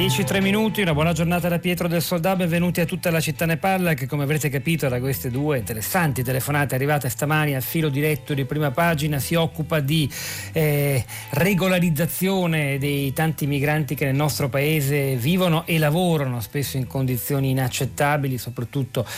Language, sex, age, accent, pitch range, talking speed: Italian, male, 40-59, native, 130-155 Hz, 160 wpm